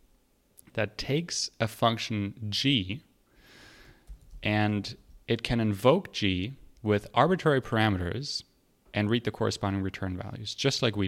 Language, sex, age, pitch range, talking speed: English, male, 30-49, 95-115 Hz, 120 wpm